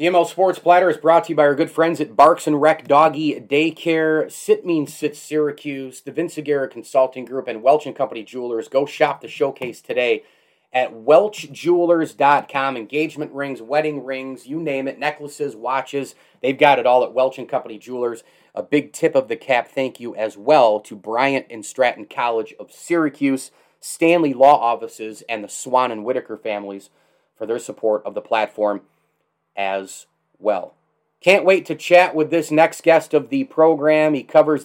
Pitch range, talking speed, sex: 120-155 Hz, 180 wpm, male